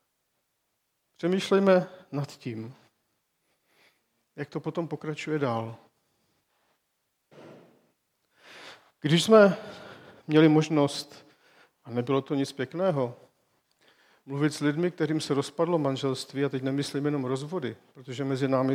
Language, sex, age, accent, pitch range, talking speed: Czech, male, 50-69, native, 135-155 Hz, 100 wpm